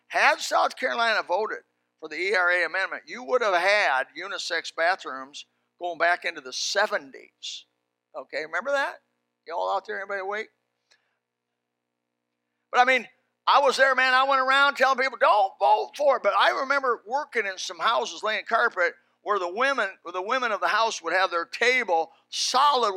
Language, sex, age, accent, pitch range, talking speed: English, male, 50-69, American, 160-240 Hz, 165 wpm